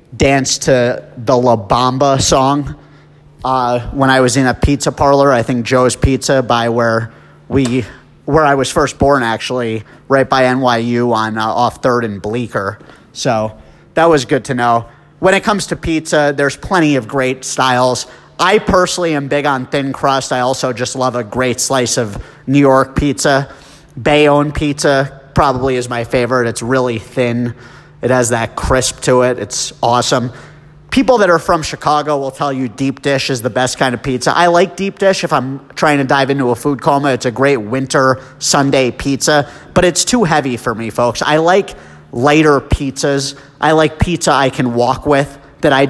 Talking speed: 185 wpm